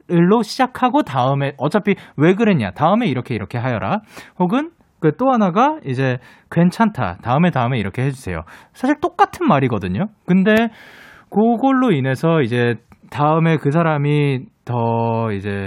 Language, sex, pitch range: Korean, male, 120-200 Hz